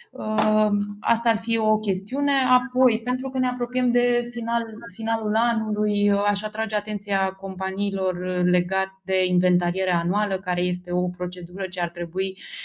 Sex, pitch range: female, 175-210 Hz